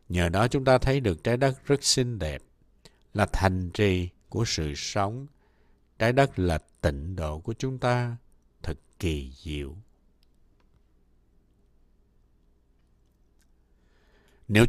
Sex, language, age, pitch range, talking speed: male, Vietnamese, 60-79, 80-125 Hz, 120 wpm